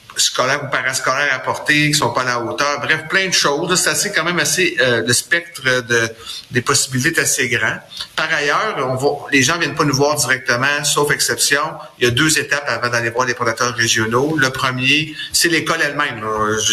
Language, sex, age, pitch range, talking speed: French, male, 30-49, 120-150 Hz, 210 wpm